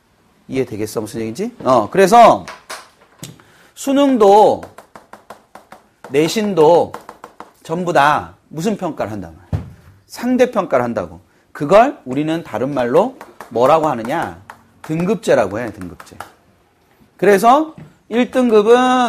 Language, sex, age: Korean, male, 30-49